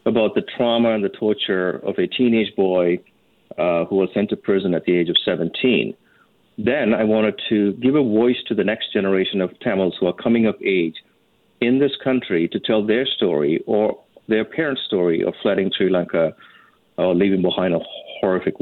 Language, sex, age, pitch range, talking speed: English, male, 50-69, 95-115 Hz, 190 wpm